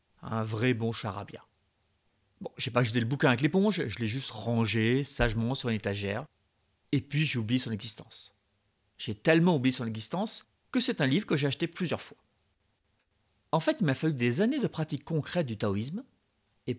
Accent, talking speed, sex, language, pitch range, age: French, 190 wpm, male, French, 110-155 Hz, 40-59